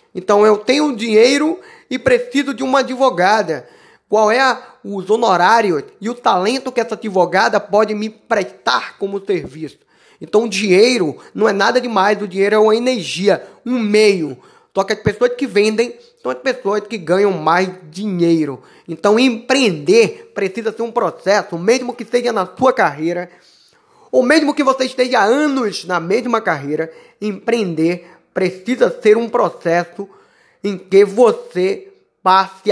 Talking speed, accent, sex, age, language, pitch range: 150 wpm, Brazilian, male, 20-39, Portuguese, 190-255 Hz